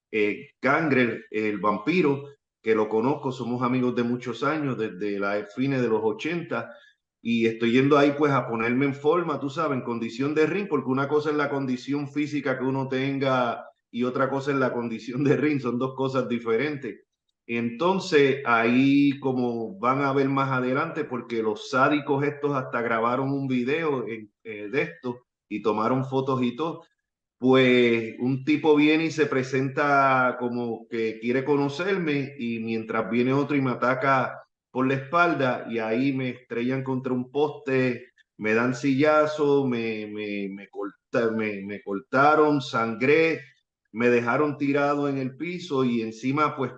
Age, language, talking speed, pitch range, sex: 30-49, Spanish, 160 wpm, 115-140 Hz, male